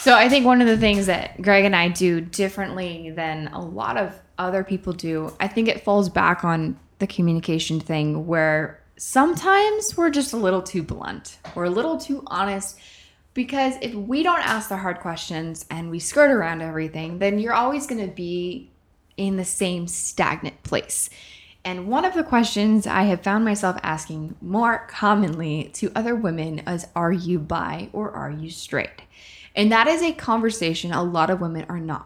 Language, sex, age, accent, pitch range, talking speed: English, female, 10-29, American, 160-215 Hz, 185 wpm